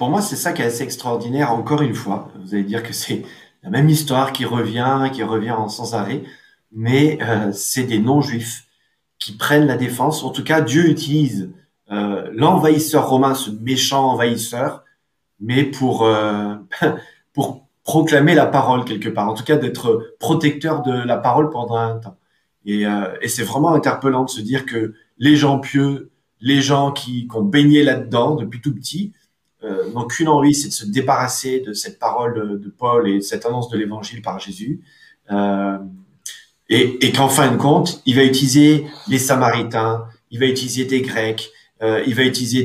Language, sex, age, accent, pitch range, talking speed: French, male, 30-49, French, 115-145 Hz, 185 wpm